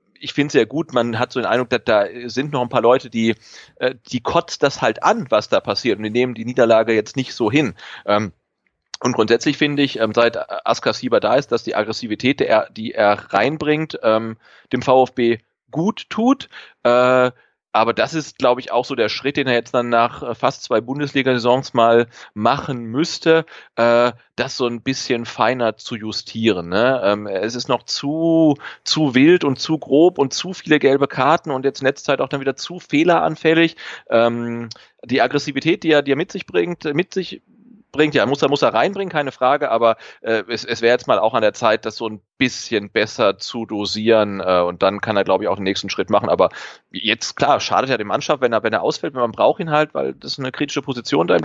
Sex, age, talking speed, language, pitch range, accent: male, 30-49, 210 wpm, German, 115-145 Hz, German